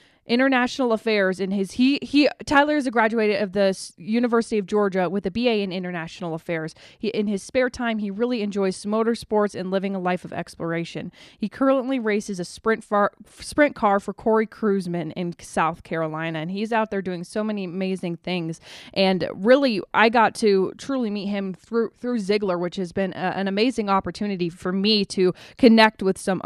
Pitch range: 185-230 Hz